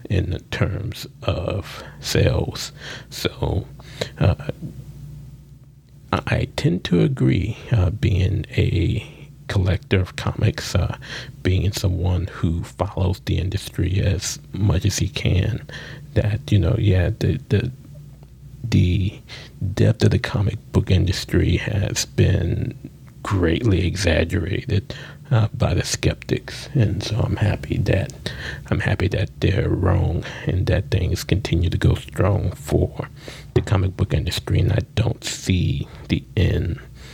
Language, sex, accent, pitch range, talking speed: English, male, American, 95-130 Hz, 125 wpm